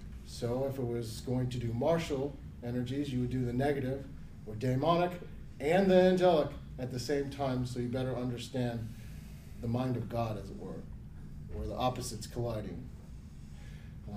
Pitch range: 120-160 Hz